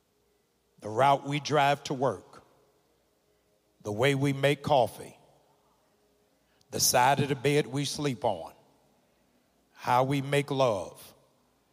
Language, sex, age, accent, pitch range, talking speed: English, male, 60-79, American, 130-165 Hz, 120 wpm